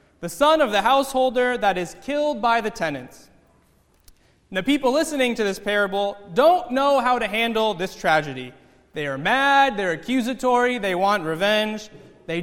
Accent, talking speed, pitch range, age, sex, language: American, 160 wpm, 190-260 Hz, 20-39, male, English